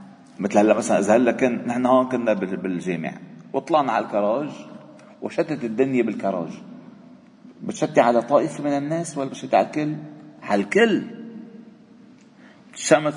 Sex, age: male, 50-69